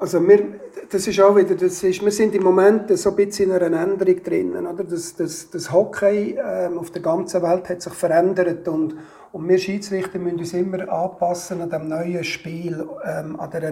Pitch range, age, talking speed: 160-190 Hz, 50-69, 205 wpm